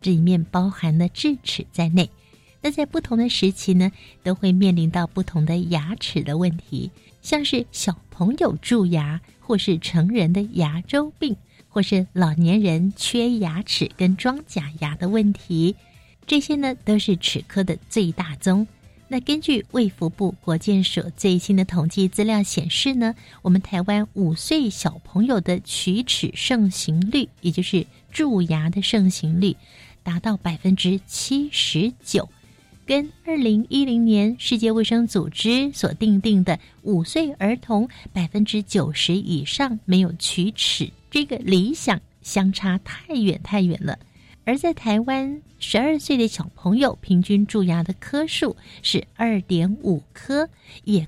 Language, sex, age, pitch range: Chinese, female, 60-79, 180-230 Hz